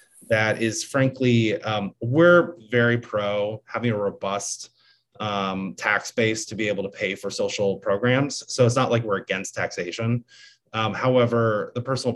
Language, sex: English, male